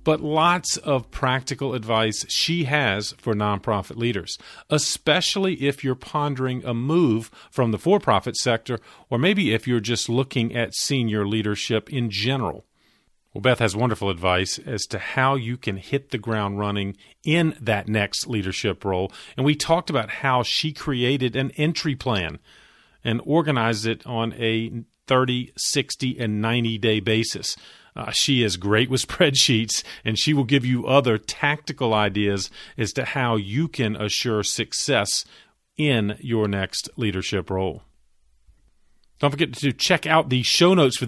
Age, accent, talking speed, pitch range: 40-59, American, 155 wpm, 110-140 Hz